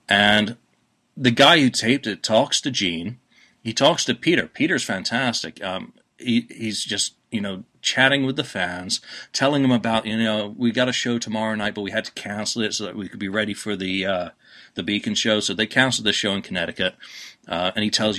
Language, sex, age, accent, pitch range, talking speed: English, male, 40-59, American, 100-125 Hz, 215 wpm